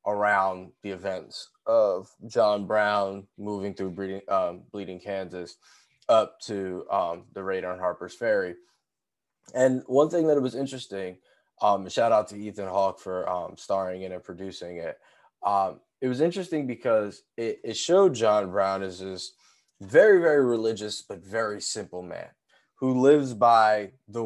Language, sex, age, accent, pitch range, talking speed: English, male, 20-39, American, 95-120 Hz, 155 wpm